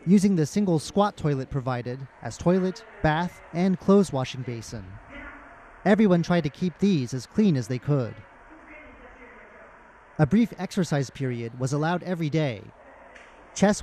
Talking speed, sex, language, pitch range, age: 140 wpm, male, English, 135-185 Hz, 30-49